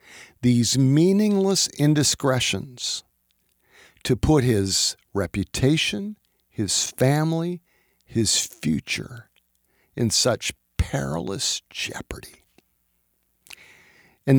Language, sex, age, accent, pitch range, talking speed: English, male, 50-69, American, 100-145 Hz, 65 wpm